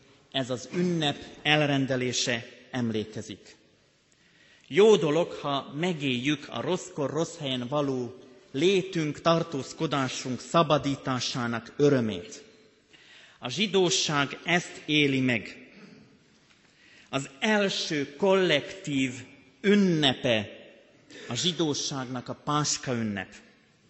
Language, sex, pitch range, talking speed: Hungarian, male, 130-170 Hz, 80 wpm